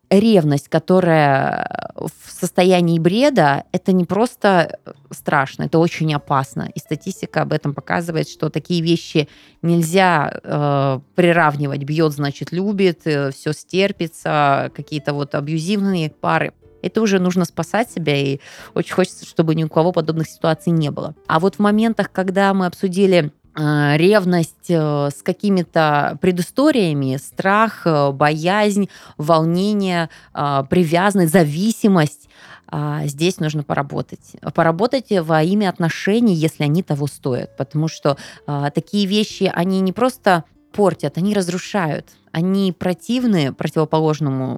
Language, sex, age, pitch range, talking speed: Russian, female, 20-39, 150-185 Hz, 120 wpm